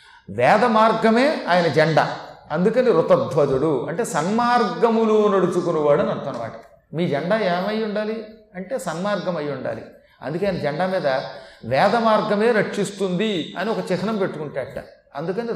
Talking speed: 125 wpm